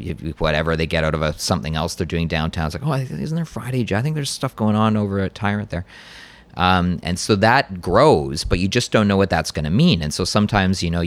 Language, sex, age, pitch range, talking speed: English, male, 30-49, 80-100 Hz, 260 wpm